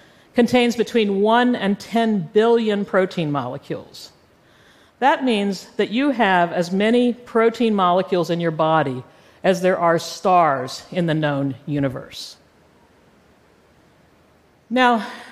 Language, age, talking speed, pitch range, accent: French, 50-69, 115 wpm, 165-215 Hz, American